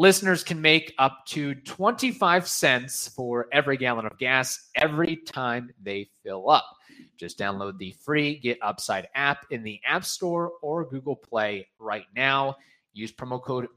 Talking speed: 155 wpm